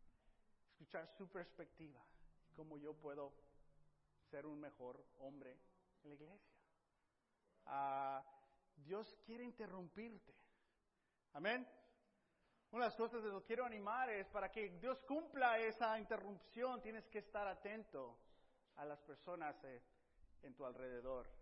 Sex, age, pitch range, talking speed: male, 40-59, 180-265 Hz, 120 wpm